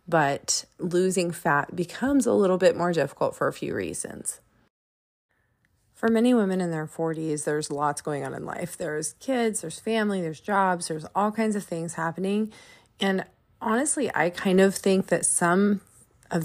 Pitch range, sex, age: 160-195 Hz, female, 30-49